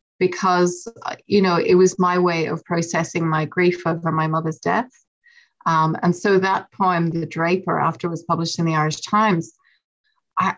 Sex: female